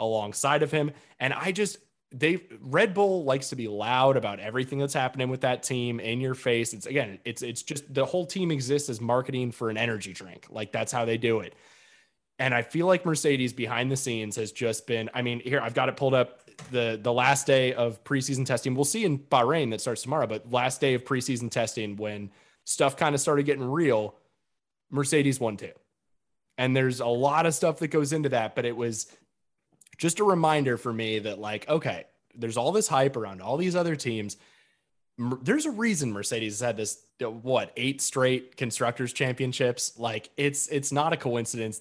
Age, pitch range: 20-39, 115-140 Hz